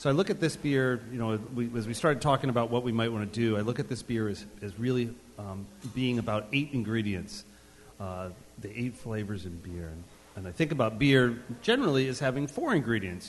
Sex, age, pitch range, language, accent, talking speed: male, 40-59, 105-130 Hz, English, American, 225 wpm